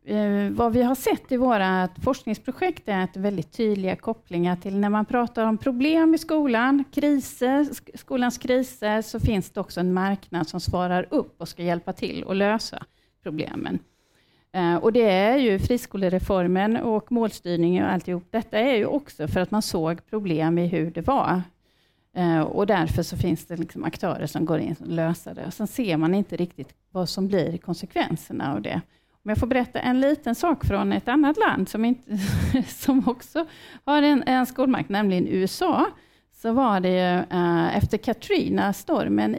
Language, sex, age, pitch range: Swedish, female, 40-59, 180-245 Hz